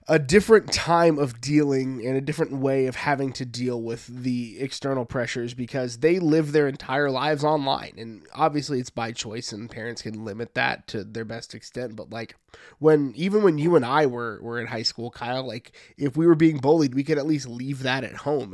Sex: male